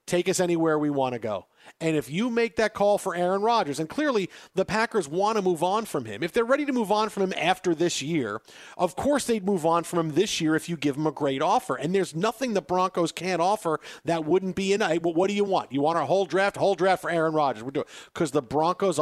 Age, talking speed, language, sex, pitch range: 40-59, 270 wpm, English, male, 150-195 Hz